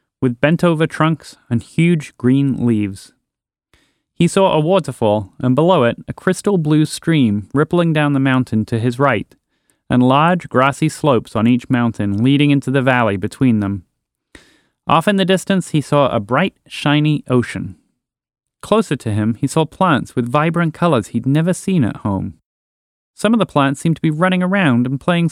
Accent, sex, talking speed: American, male, 175 wpm